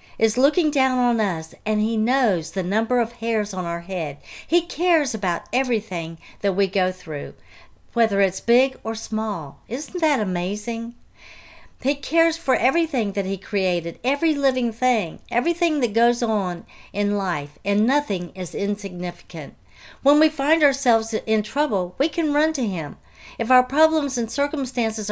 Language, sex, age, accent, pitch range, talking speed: English, female, 60-79, American, 200-290 Hz, 160 wpm